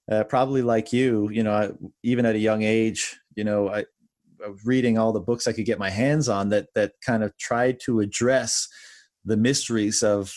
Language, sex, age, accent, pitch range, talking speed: English, male, 30-49, American, 105-120 Hz, 215 wpm